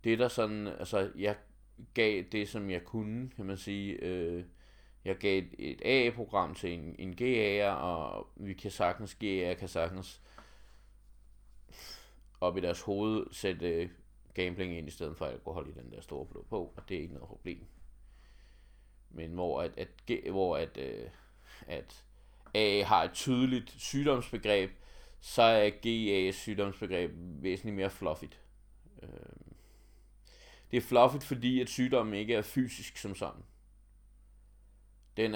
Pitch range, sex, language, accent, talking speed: 90-110 Hz, male, Danish, native, 145 wpm